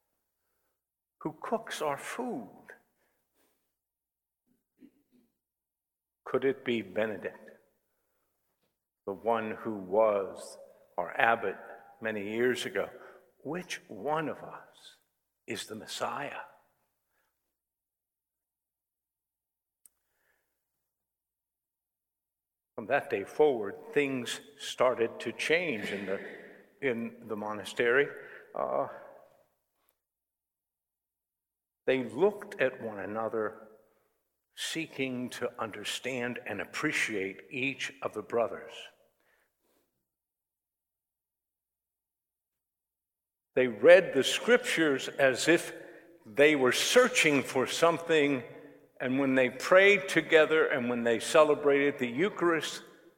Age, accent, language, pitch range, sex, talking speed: 60-79, American, English, 95-145 Hz, male, 80 wpm